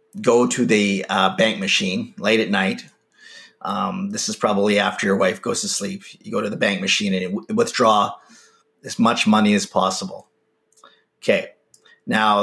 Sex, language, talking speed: male, English, 165 wpm